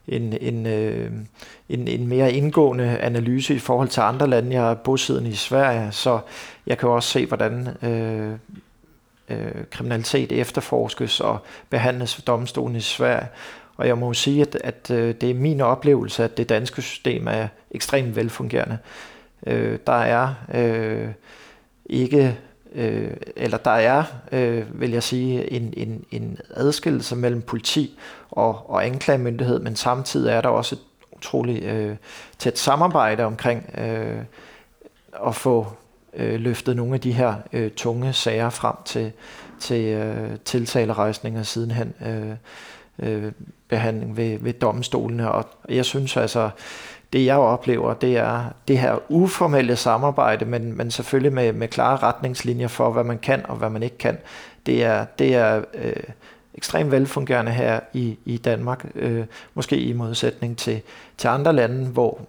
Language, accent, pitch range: Danish, native, 115-130 Hz